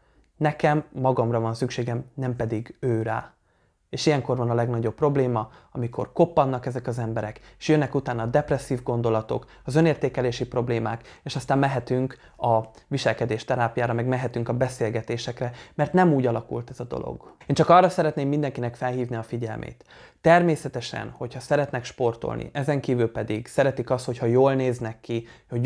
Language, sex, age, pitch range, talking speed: Hungarian, male, 20-39, 120-140 Hz, 155 wpm